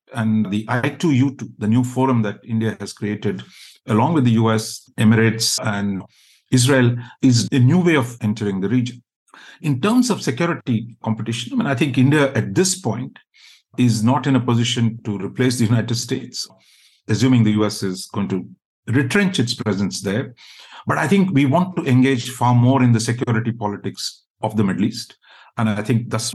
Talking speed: 180 wpm